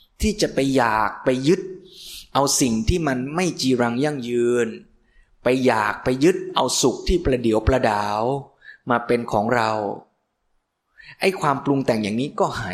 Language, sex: Thai, male